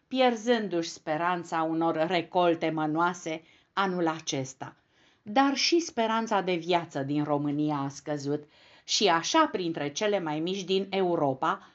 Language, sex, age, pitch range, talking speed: Romanian, female, 50-69, 155-215 Hz, 125 wpm